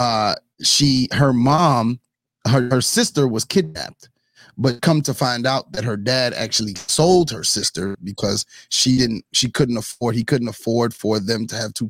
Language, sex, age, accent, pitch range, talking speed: English, male, 30-49, American, 115-140 Hz, 175 wpm